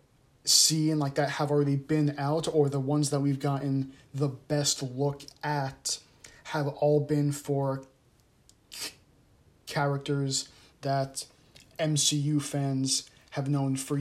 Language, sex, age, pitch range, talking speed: English, male, 20-39, 135-150 Hz, 135 wpm